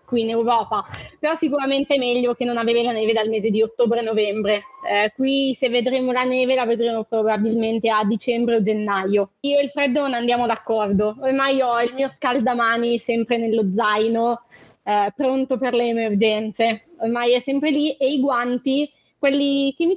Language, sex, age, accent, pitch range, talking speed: Italian, female, 20-39, native, 230-270 Hz, 175 wpm